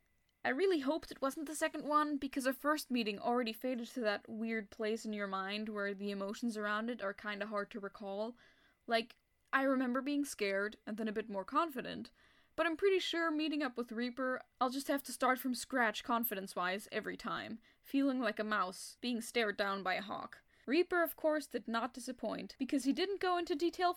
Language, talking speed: English, 205 wpm